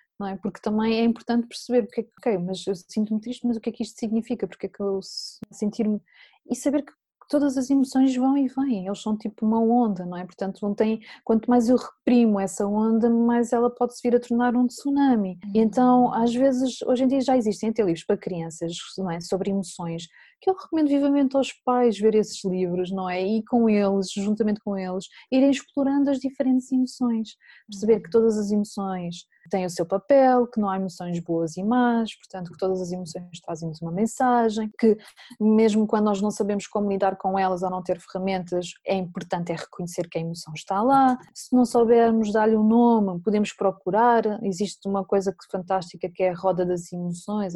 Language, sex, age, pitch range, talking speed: Portuguese, female, 20-39, 190-235 Hz, 210 wpm